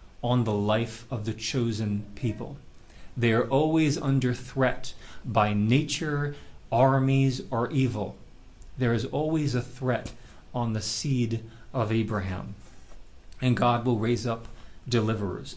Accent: American